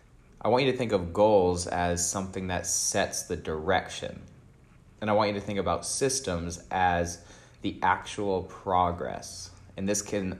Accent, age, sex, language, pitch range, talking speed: American, 20-39, male, English, 90-105 Hz, 160 wpm